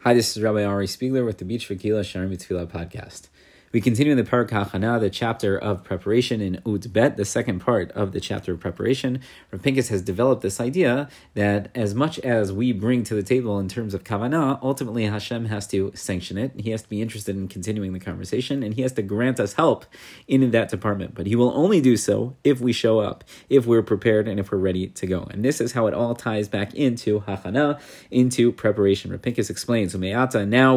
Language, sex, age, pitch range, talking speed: English, male, 30-49, 100-125 Hz, 215 wpm